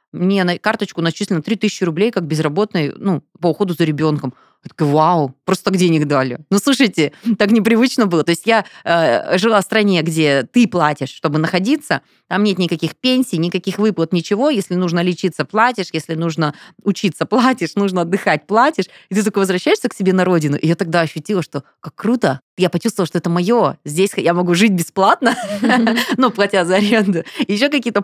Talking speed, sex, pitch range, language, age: 180 wpm, female, 160-215 Hz, Russian, 20-39